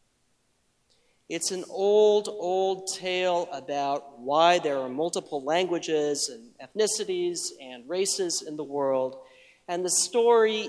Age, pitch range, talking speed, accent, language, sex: 40-59, 145-185 Hz, 120 wpm, American, English, male